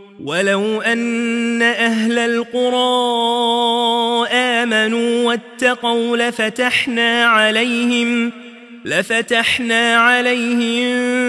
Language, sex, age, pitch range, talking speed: Arabic, male, 30-49, 215-245 Hz, 55 wpm